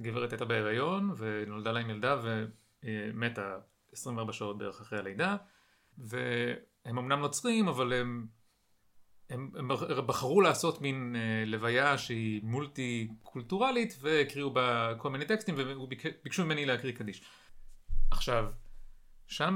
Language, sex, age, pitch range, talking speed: Hebrew, male, 30-49, 110-150 Hz, 125 wpm